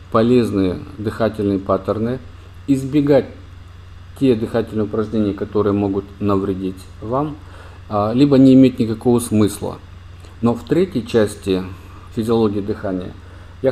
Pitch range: 95-125 Hz